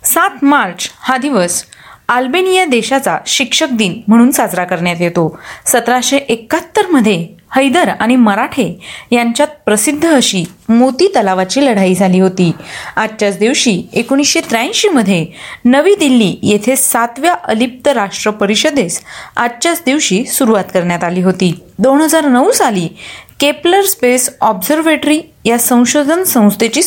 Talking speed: 115 wpm